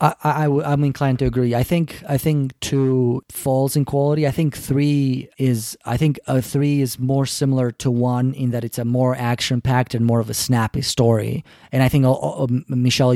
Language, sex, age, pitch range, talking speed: English, male, 30-49, 120-140 Hz, 210 wpm